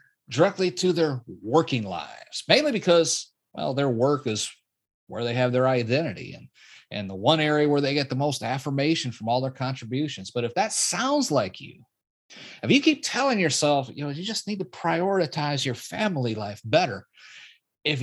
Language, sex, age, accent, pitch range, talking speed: English, male, 30-49, American, 130-195 Hz, 180 wpm